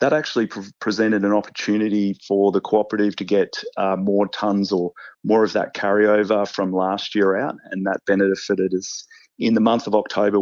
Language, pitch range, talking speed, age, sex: English, 95-110 Hz, 185 wpm, 30-49, male